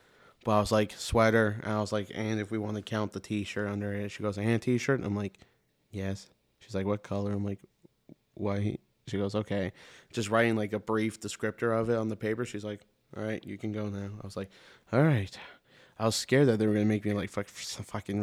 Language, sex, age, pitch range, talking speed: English, male, 20-39, 100-110 Hz, 245 wpm